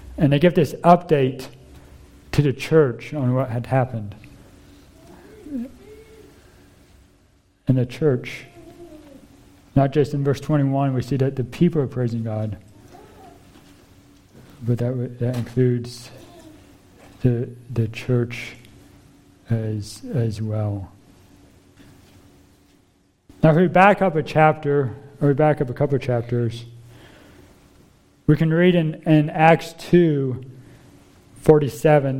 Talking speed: 110 wpm